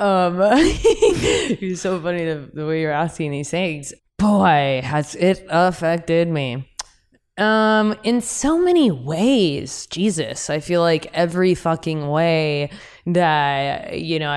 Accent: American